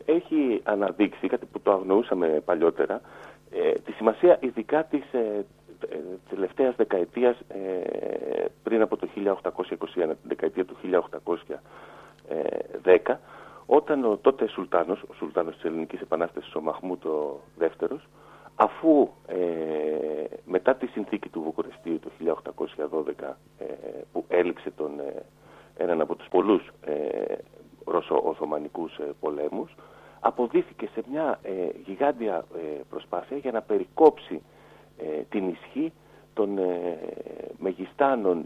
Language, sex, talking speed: Greek, male, 100 wpm